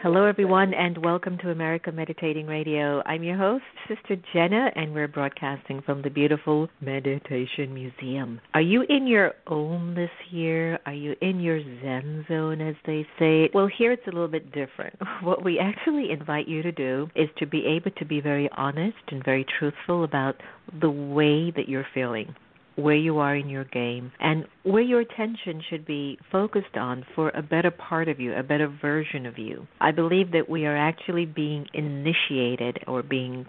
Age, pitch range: 50-69, 140-175 Hz